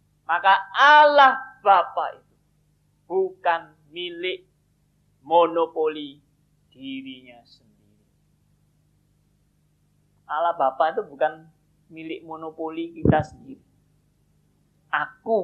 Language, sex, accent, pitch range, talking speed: Indonesian, male, native, 145-195 Hz, 70 wpm